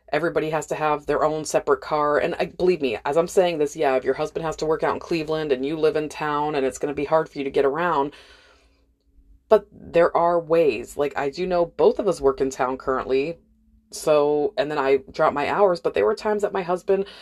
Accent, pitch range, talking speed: American, 150-200 Hz, 245 wpm